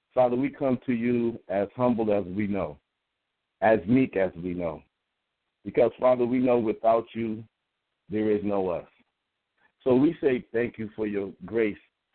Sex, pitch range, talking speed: male, 105-125 Hz, 165 wpm